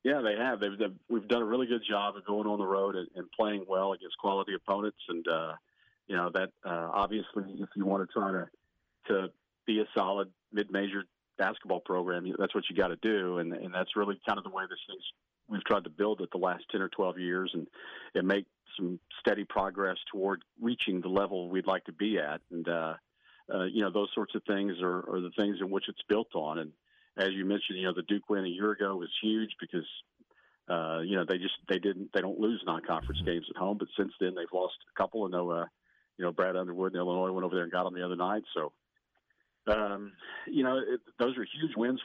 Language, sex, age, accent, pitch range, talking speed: English, male, 40-59, American, 90-105 Hz, 235 wpm